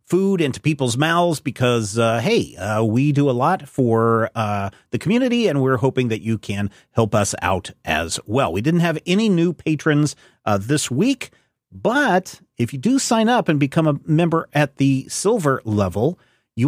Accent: American